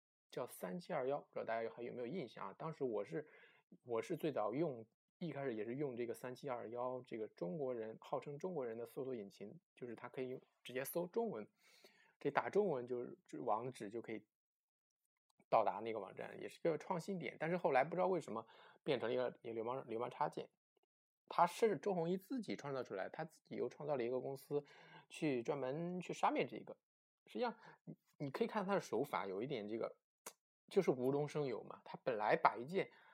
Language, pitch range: Chinese, 120-200 Hz